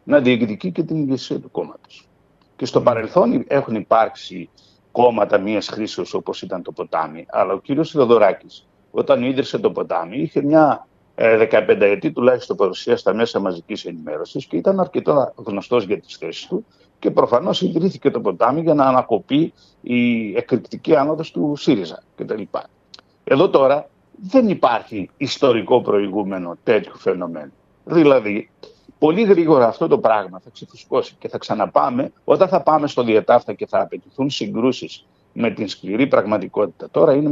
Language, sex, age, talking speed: Greek, male, 60-79, 150 wpm